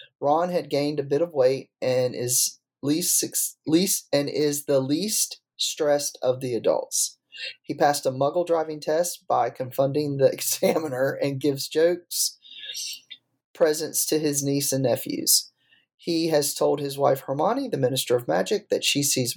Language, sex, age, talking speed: English, male, 30-49, 160 wpm